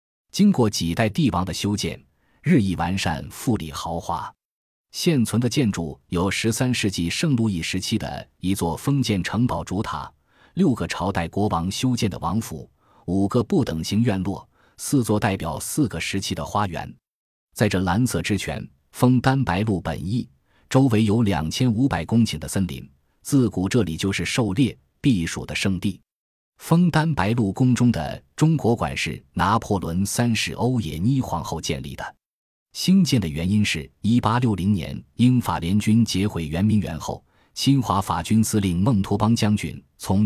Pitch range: 85-115 Hz